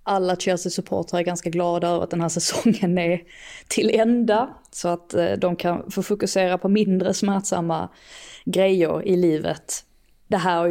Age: 20-39